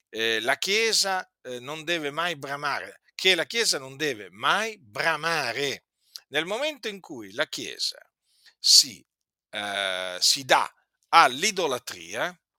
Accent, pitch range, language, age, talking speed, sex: native, 125-190 Hz, Italian, 50-69, 125 wpm, male